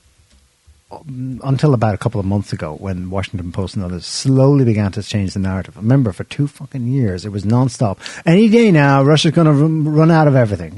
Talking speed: 200 wpm